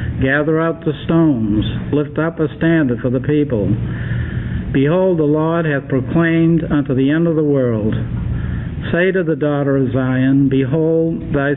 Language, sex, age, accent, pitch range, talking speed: English, male, 60-79, American, 125-150 Hz, 155 wpm